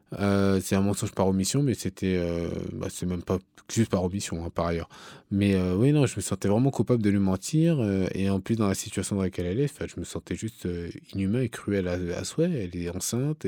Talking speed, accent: 250 wpm, French